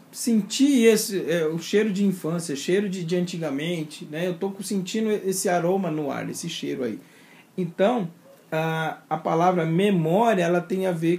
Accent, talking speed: Brazilian, 165 wpm